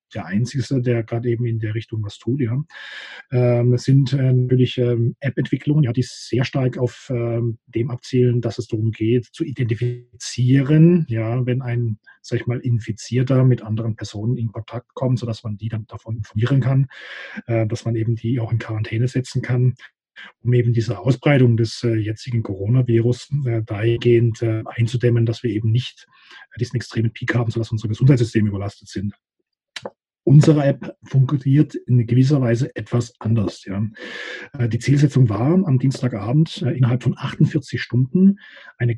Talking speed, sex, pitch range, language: 160 wpm, male, 115-135 Hz, German